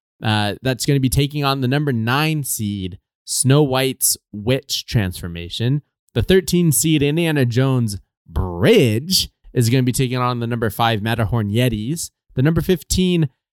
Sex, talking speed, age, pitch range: male, 155 wpm, 20-39, 110-150 Hz